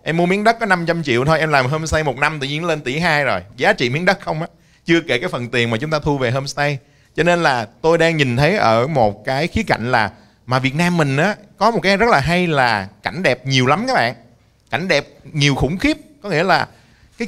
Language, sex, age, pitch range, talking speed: Vietnamese, male, 20-39, 120-165 Hz, 265 wpm